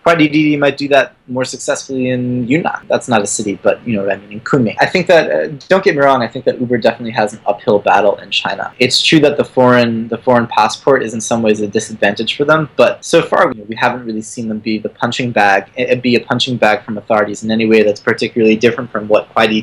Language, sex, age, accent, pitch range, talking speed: English, male, 20-39, American, 110-135 Hz, 265 wpm